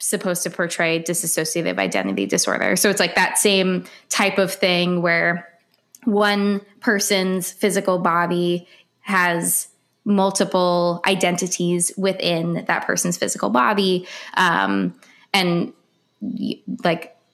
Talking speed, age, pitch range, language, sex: 105 wpm, 20-39, 170-200 Hz, English, female